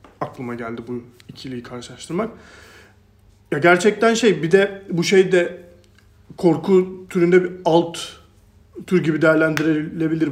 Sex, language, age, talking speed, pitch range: male, Turkish, 40-59, 115 wpm, 140-180 Hz